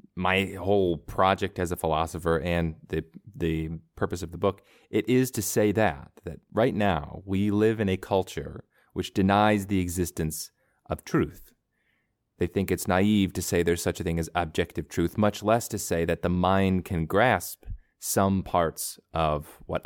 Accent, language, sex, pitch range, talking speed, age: American, English, male, 85-105 Hz, 175 wpm, 30-49